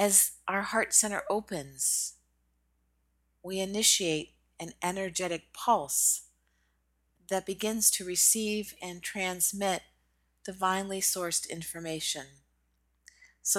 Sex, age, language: female, 40-59, English